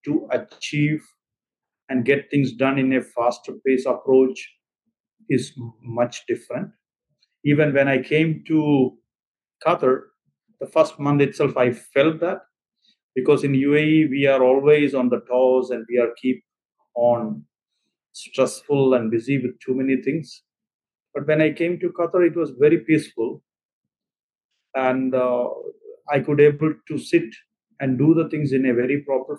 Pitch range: 130-170 Hz